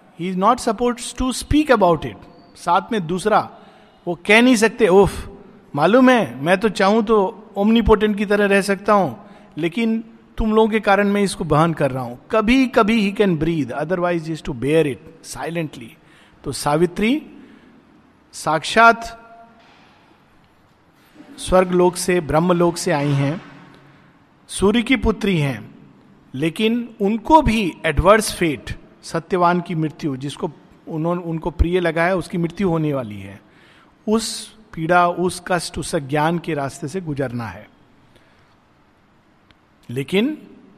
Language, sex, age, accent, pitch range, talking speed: Hindi, male, 50-69, native, 155-210 Hz, 145 wpm